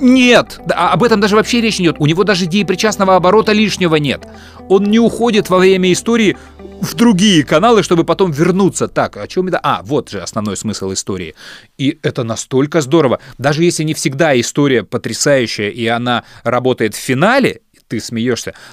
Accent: native